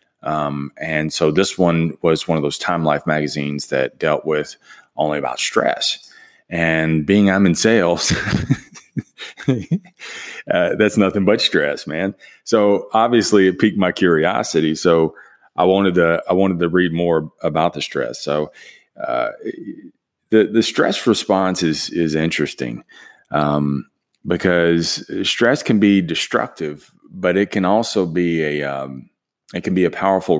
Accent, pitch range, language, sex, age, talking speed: American, 80-100 Hz, English, male, 30-49, 145 wpm